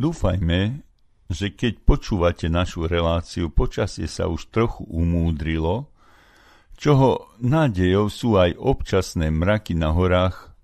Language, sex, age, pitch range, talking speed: Slovak, male, 50-69, 80-105 Hz, 105 wpm